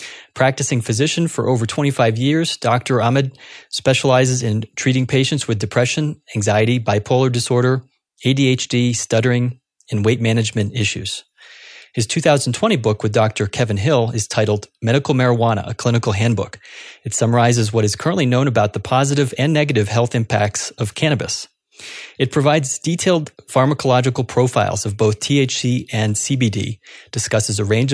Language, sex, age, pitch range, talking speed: English, male, 30-49, 110-135 Hz, 140 wpm